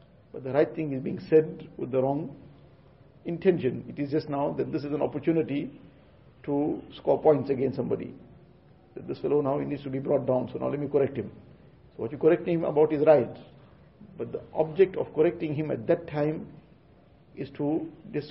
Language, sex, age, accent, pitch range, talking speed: English, male, 50-69, Indian, 130-155 Hz, 205 wpm